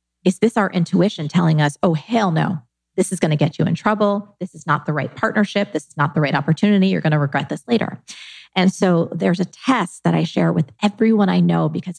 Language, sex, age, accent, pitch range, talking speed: English, female, 30-49, American, 155-200 Hz, 240 wpm